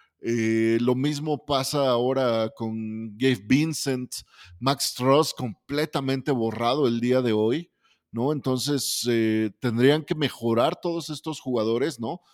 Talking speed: 125 wpm